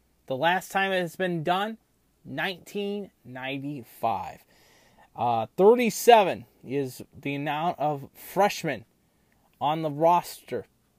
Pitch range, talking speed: 140-180 Hz, 100 wpm